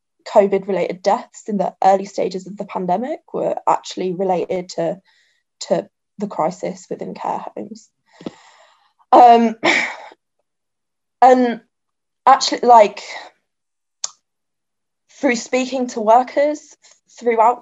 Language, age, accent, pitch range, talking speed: English, 20-39, British, 195-235 Hz, 95 wpm